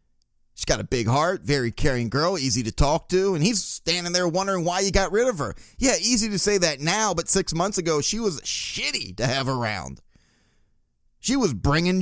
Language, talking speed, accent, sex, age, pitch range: English, 210 wpm, American, male, 30-49, 130-175 Hz